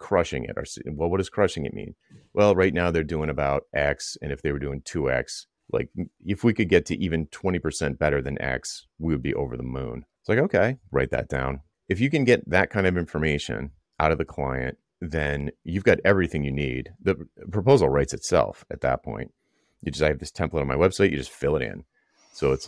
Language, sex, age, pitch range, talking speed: English, male, 30-49, 70-85 Hz, 230 wpm